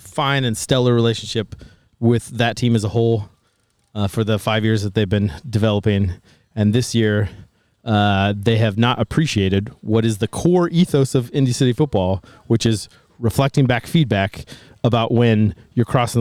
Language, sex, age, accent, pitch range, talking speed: English, male, 30-49, American, 105-125 Hz, 165 wpm